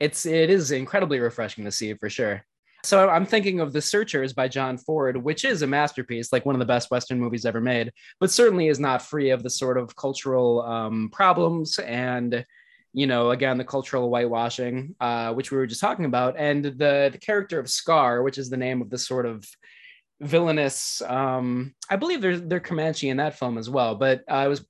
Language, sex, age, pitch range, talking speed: English, male, 20-39, 125-165 Hz, 210 wpm